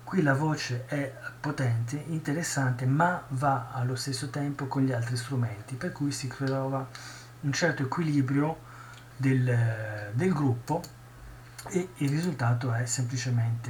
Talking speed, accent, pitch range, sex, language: 130 wpm, native, 120-145 Hz, male, Italian